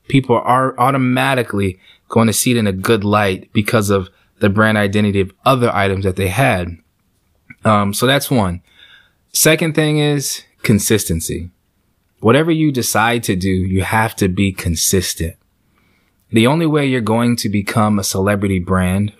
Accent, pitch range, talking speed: American, 95-120 Hz, 155 wpm